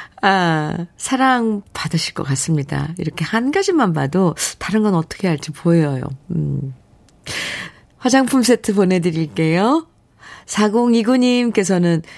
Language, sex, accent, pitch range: Korean, female, native, 145-215 Hz